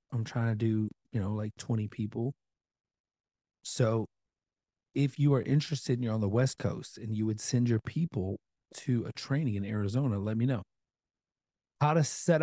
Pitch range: 100-125 Hz